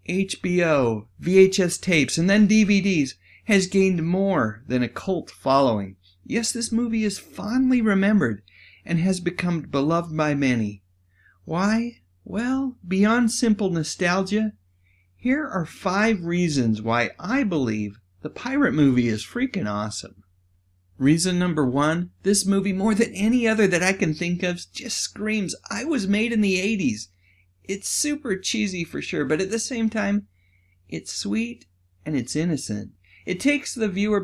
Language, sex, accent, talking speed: English, male, American, 145 wpm